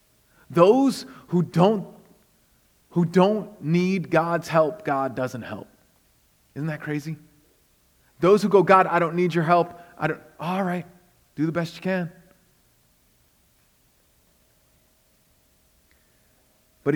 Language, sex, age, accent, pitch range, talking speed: English, male, 40-59, American, 115-165 Hz, 115 wpm